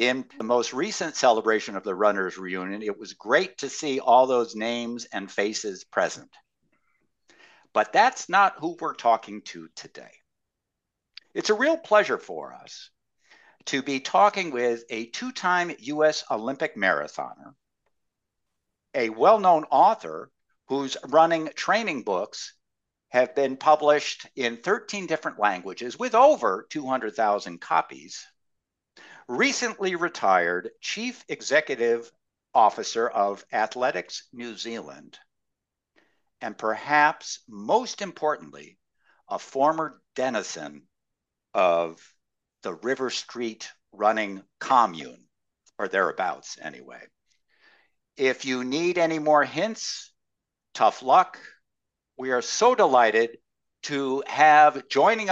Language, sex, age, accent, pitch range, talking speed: English, male, 60-79, American, 115-175 Hz, 110 wpm